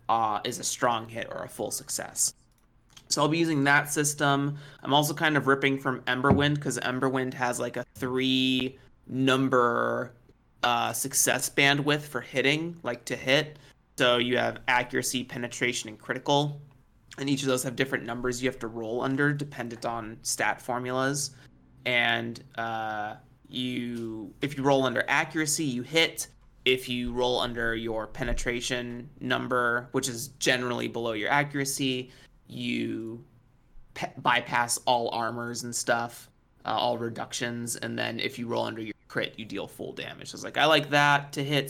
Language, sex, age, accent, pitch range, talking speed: English, male, 30-49, American, 120-140 Hz, 165 wpm